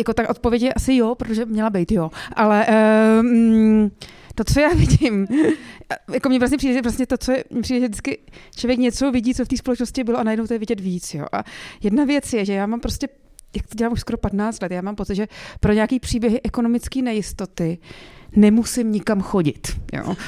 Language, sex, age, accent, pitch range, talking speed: Czech, female, 30-49, native, 210-245 Hz, 215 wpm